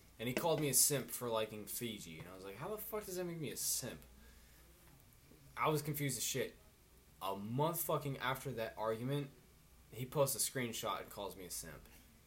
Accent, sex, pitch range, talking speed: American, male, 105-165 Hz, 205 wpm